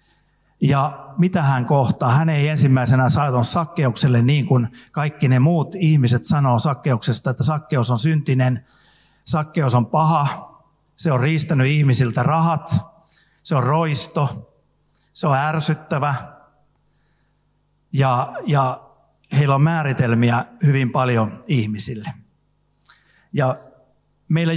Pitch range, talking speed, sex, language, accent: 130-155 Hz, 105 wpm, male, Finnish, native